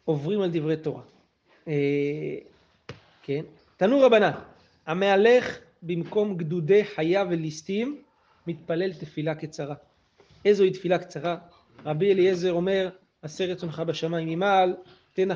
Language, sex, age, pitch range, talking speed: Hebrew, male, 30-49, 160-190 Hz, 105 wpm